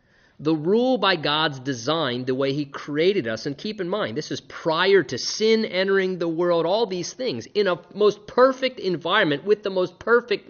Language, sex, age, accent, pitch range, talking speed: English, male, 30-49, American, 135-185 Hz, 195 wpm